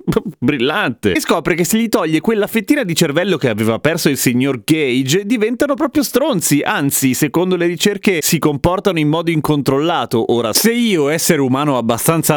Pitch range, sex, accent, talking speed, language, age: 135-205 Hz, male, native, 170 wpm, Italian, 30-49